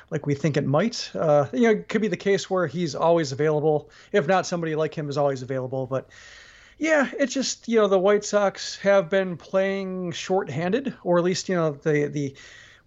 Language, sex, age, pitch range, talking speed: English, male, 40-59, 155-200 Hz, 210 wpm